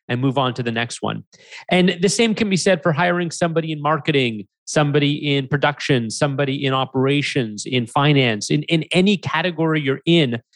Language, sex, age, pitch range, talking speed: English, male, 30-49, 135-165 Hz, 180 wpm